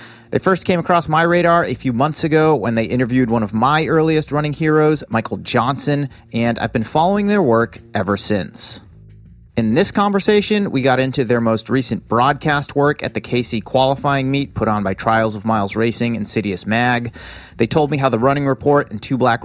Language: English